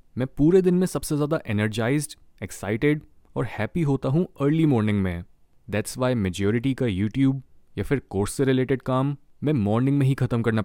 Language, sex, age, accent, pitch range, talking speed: Hindi, male, 20-39, native, 105-145 Hz, 180 wpm